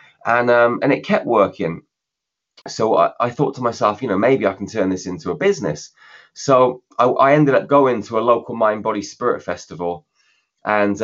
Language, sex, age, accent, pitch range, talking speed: English, male, 20-39, British, 100-130 Hz, 195 wpm